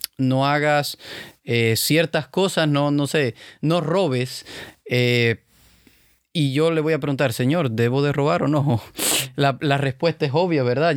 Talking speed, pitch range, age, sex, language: 160 wpm, 130-160 Hz, 30-49, male, Spanish